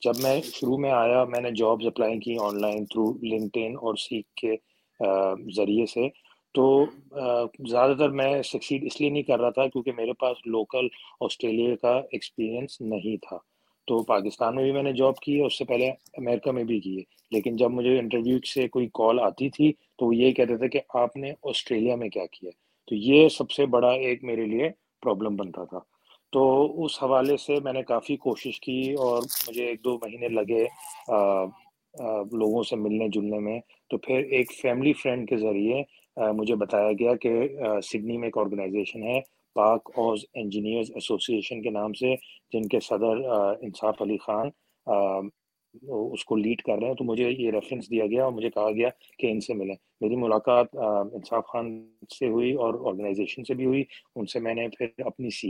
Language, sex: Urdu, male